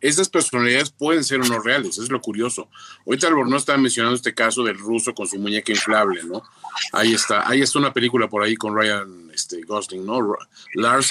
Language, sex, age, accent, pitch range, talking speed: Spanish, male, 40-59, Mexican, 110-135 Hz, 195 wpm